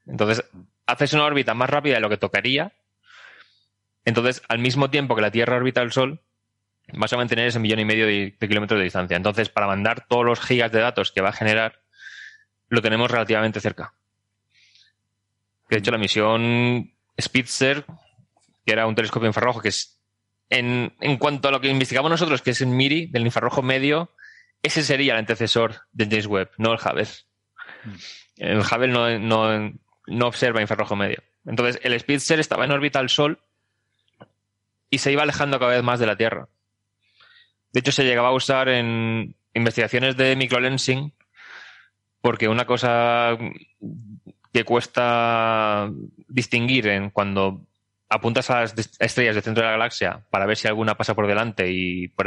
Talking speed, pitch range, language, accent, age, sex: 165 wpm, 105-125 Hz, Spanish, Spanish, 20-39, male